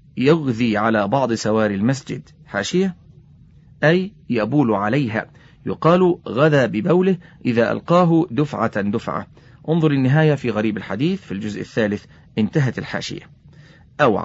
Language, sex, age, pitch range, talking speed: Arabic, male, 40-59, 115-155 Hz, 115 wpm